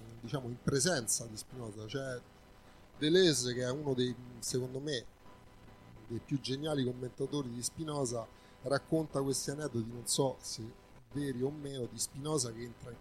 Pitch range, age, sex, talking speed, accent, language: 115-140 Hz, 30-49, male, 150 wpm, native, Italian